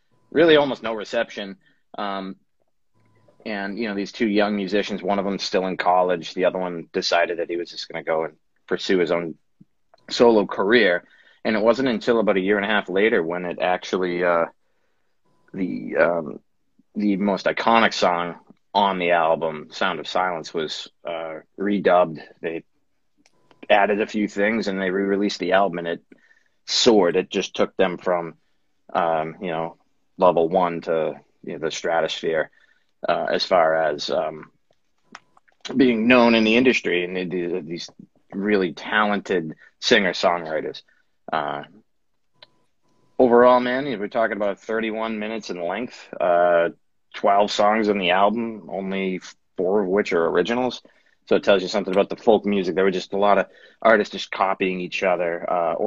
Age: 30-49